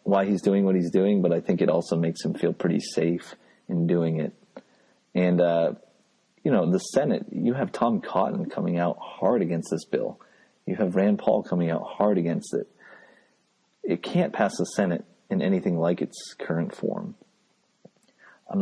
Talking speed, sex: 180 wpm, male